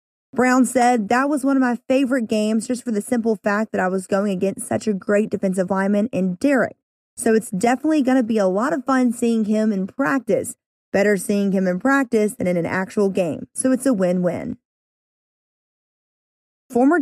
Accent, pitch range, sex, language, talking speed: American, 200-255 Hz, female, English, 195 wpm